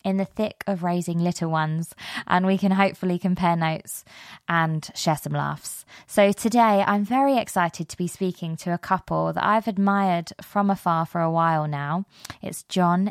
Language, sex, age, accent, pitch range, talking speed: English, female, 20-39, British, 175-205 Hz, 180 wpm